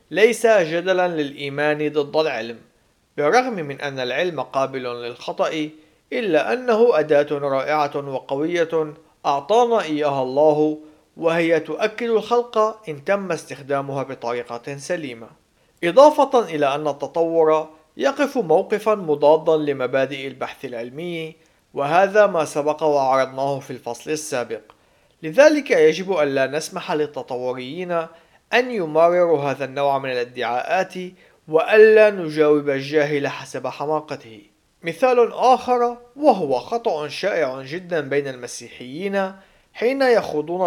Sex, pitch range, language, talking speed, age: male, 140-190 Hz, Arabic, 105 wpm, 50-69